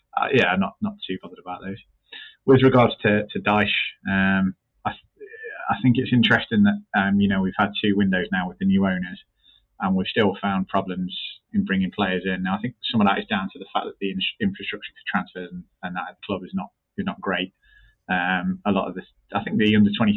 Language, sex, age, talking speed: English, male, 20-39, 240 wpm